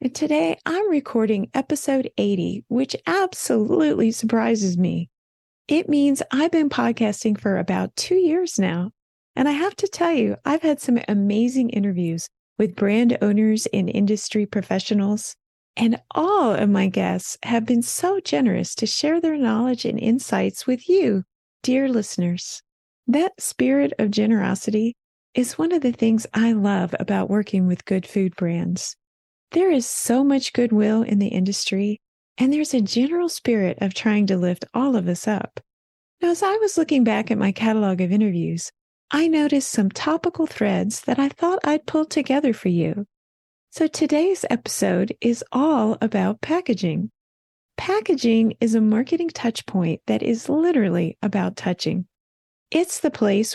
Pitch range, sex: 200-285 Hz, female